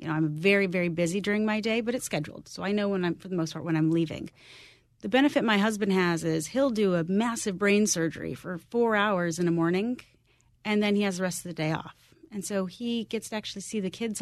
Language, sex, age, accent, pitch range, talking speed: English, female, 30-49, American, 165-205 Hz, 260 wpm